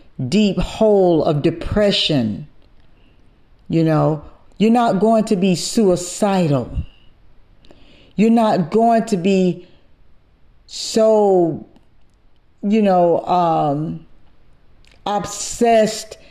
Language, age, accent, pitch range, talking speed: English, 40-59, American, 165-210 Hz, 80 wpm